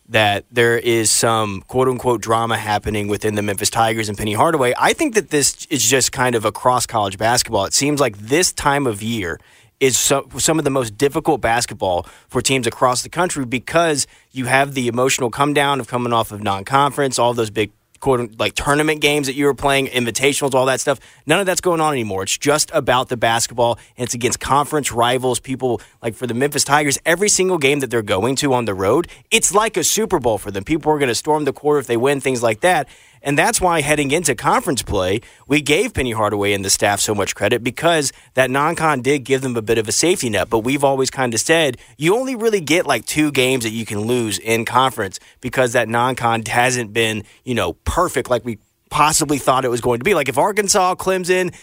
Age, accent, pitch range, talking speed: 30-49, American, 115-150 Hz, 220 wpm